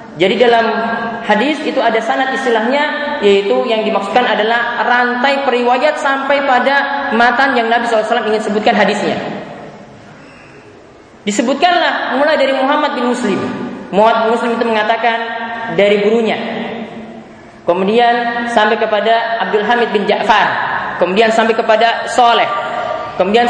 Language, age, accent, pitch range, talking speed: Indonesian, 20-39, native, 225-265 Hz, 120 wpm